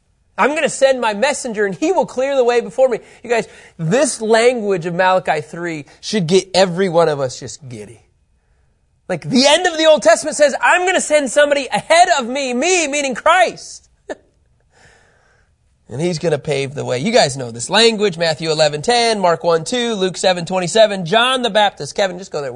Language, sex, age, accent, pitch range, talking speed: English, male, 30-49, American, 155-225 Hz, 205 wpm